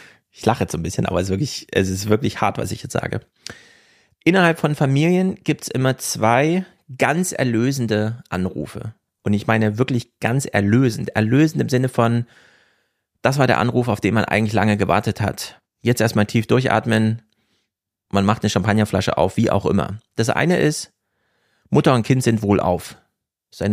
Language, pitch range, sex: German, 100-125 Hz, male